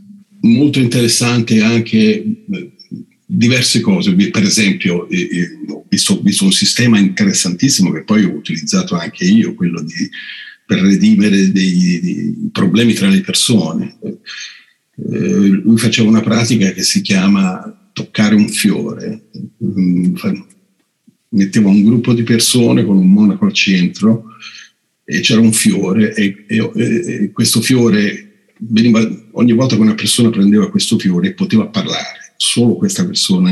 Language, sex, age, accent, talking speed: Italian, male, 50-69, native, 130 wpm